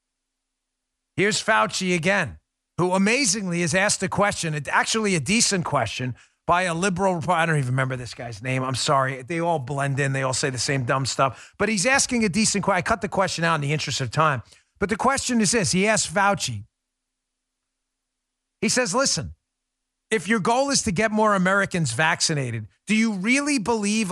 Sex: male